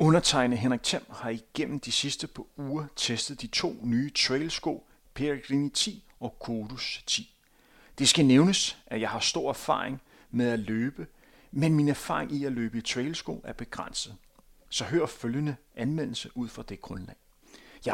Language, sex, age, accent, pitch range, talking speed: Danish, male, 40-59, native, 115-150 Hz, 165 wpm